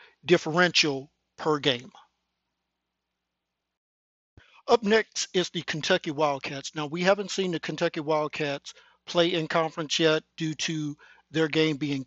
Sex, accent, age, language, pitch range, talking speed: male, American, 50-69, English, 140-175 Hz, 125 wpm